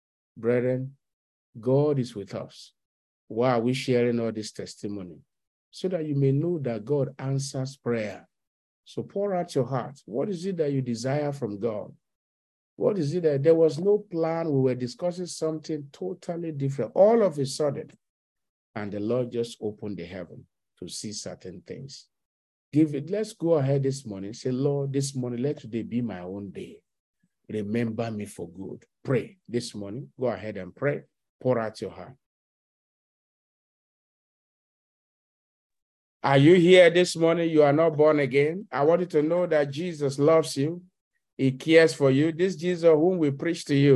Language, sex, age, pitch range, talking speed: English, male, 50-69, 120-165 Hz, 170 wpm